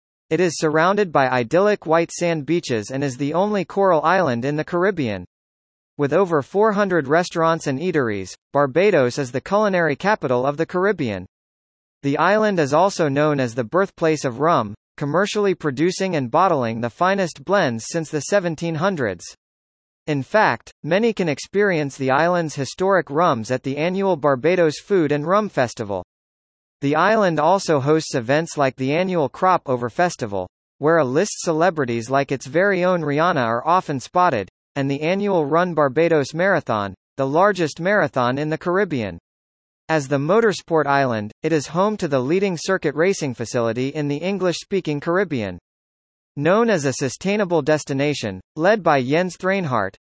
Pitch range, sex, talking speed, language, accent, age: 135-180 Hz, male, 155 wpm, English, American, 40-59